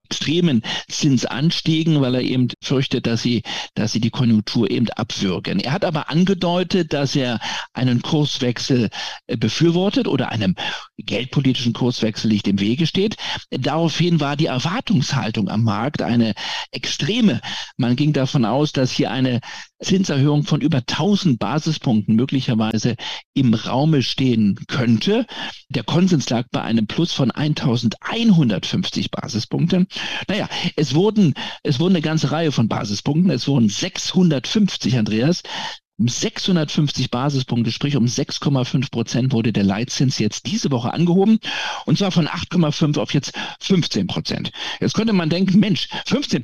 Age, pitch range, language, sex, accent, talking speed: 50-69, 120-170 Hz, German, male, German, 135 wpm